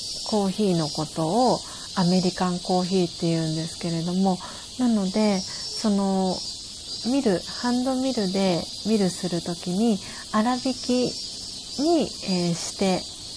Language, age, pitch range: Japanese, 40-59, 175-230 Hz